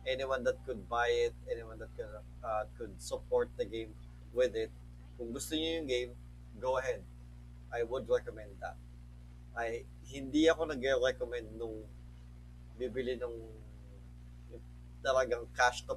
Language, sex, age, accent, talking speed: Filipino, male, 20-39, native, 145 wpm